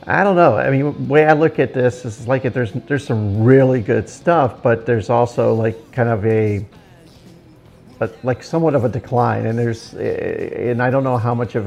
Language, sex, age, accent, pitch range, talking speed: English, male, 50-69, American, 105-125 Hz, 205 wpm